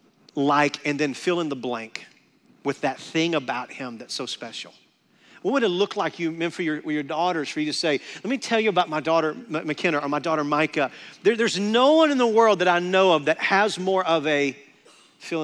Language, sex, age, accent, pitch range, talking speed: English, male, 40-59, American, 135-180 Hz, 230 wpm